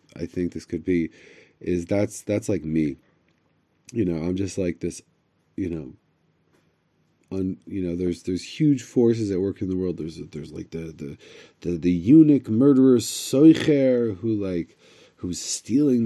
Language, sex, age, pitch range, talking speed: English, male, 30-49, 90-115 Hz, 165 wpm